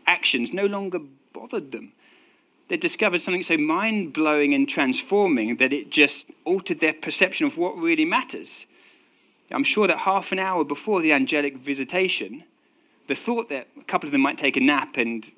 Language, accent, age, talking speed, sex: English, British, 30-49, 170 wpm, male